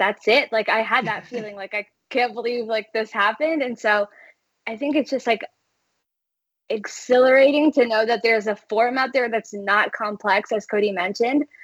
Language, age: English, 10-29